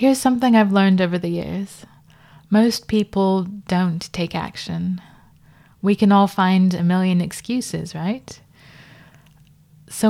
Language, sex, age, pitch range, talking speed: English, female, 20-39, 165-195 Hz, 125 wpm